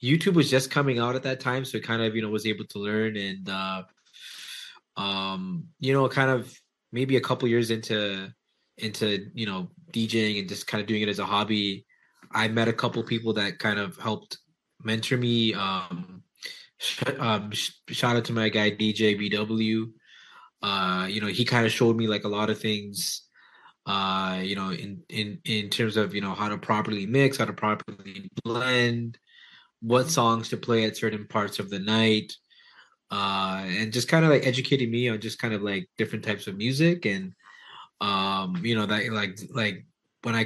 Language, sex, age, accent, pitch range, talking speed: English, male, 20-39, American, 100-120 Hz, 195 wpm